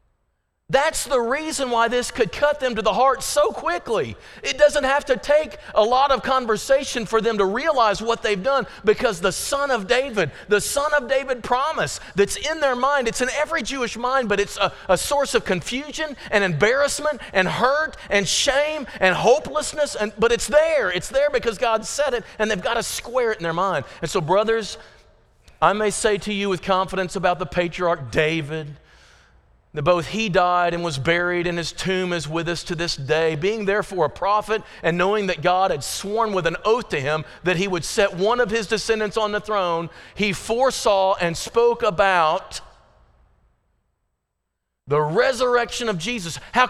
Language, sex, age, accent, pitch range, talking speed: English, male, 40-59, American, 190-280 Hz, 190 wpm